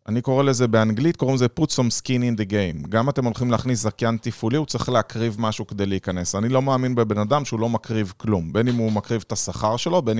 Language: Hebrew